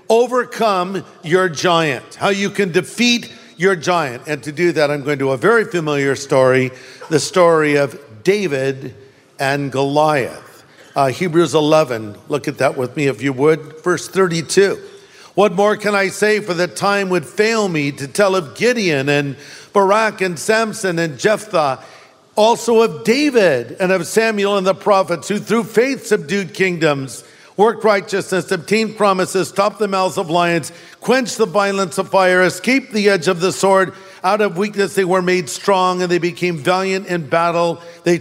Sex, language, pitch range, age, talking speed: male, English, 155-200 Hz, 50-69, 170 wpm